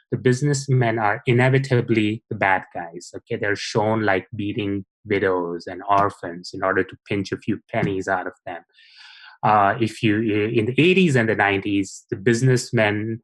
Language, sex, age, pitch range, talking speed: English, male, 30-49, 100-125 Hz, 165 wpm